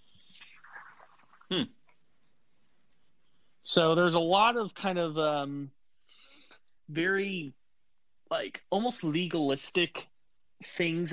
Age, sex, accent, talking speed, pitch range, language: 30-49, male, American, 75 wpm, 135-165 Hz, English